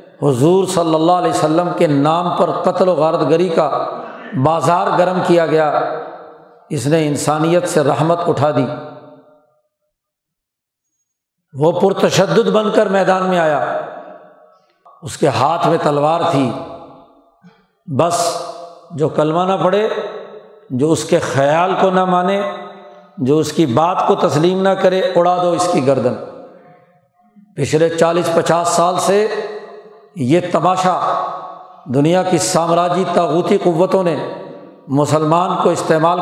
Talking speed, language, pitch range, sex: 130 wpm, Urdu, 155-190 Hz, male